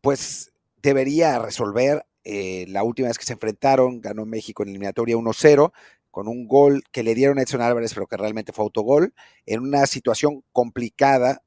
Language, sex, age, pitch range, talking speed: English, male, 40-59, 105-140 Hz, 175 wpm